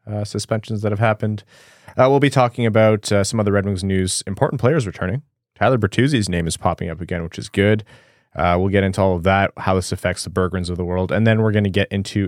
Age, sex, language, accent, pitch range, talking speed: 20-39, male, English, American, 90-110 Hz, 250 wpm